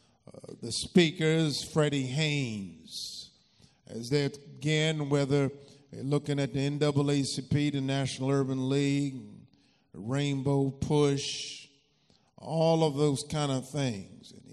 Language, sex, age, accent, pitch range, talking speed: English, male, 50-69, American, 135-155 Hz, 105 wpm